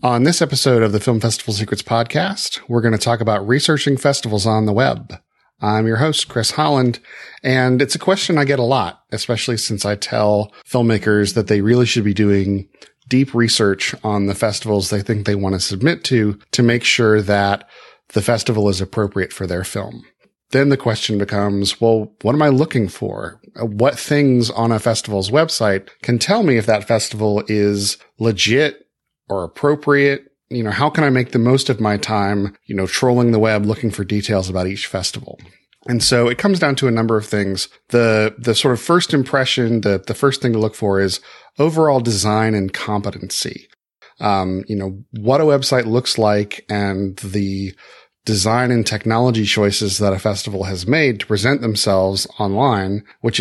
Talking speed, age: 185 wpm, 40-59